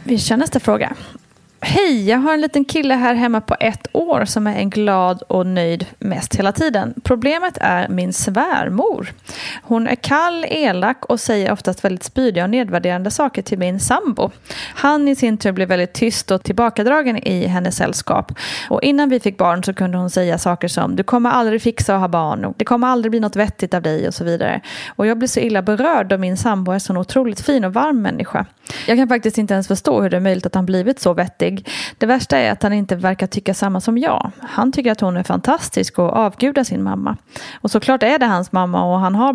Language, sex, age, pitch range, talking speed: Swedish, female, 30-49, 185-250 Hz, 225 wpm